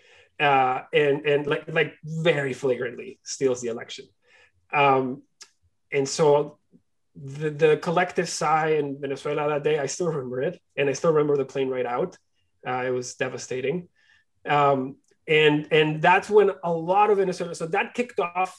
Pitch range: 140-170 Hz